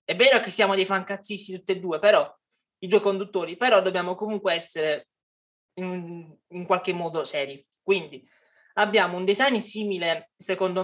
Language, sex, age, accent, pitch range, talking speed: Italian, male, 20-39, native, 170-200 Hz, 155 wpm